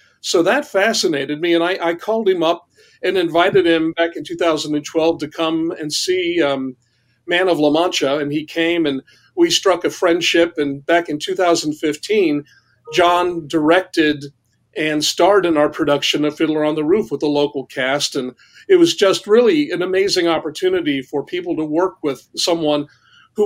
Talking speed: 175 wpm